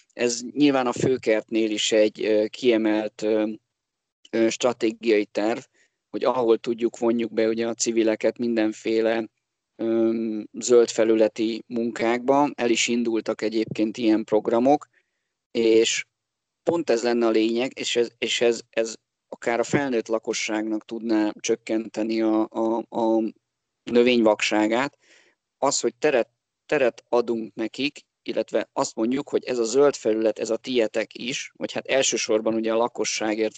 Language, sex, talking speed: Hungarian, male, 125 wpm